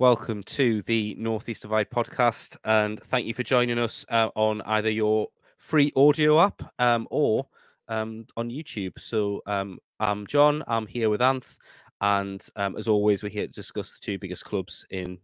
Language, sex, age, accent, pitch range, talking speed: English, male, 20-39, British, 105-125 Hz, 180 wpm